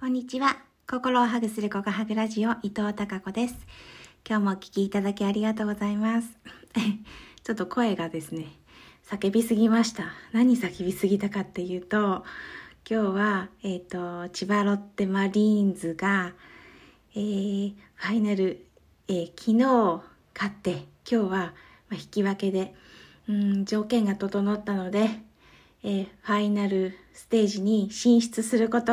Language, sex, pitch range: Japanese, female, 190-225 Hz